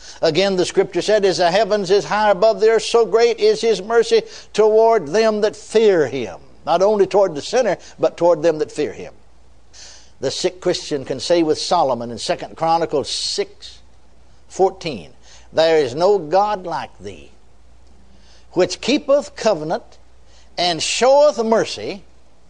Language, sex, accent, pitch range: English, male, American, 145-220 Hz